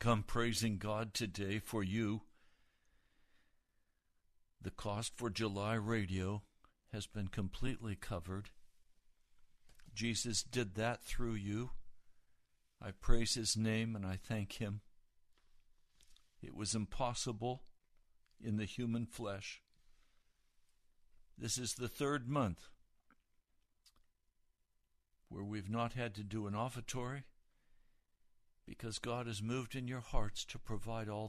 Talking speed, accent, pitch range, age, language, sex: 110 wpm, American, 100-115 Hz, 60-79, English, male